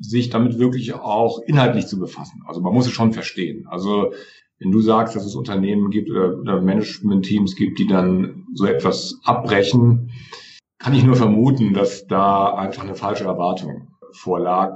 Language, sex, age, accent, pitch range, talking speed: German, male, 50-69, German, 100-125 Hz, 165 wpm